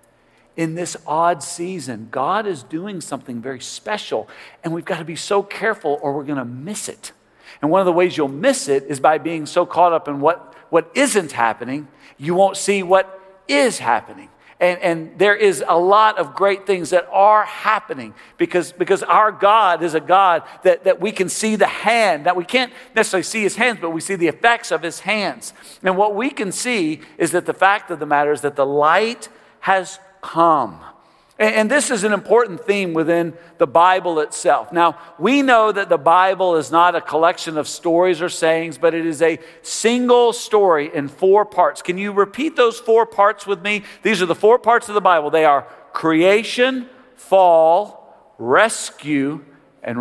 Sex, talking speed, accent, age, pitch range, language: male, 195 wpm, American, 50-69, 165-205 Hz, English